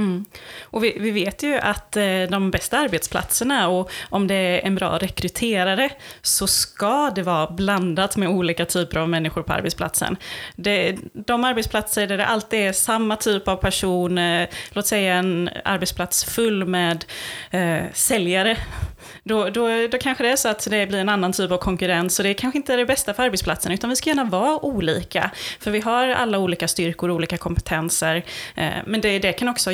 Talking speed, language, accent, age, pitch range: 175 wpm, Swedish, native, 30-49, 175-220 Hz